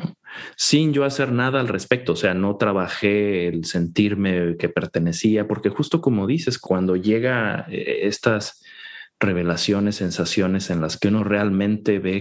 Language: Spanish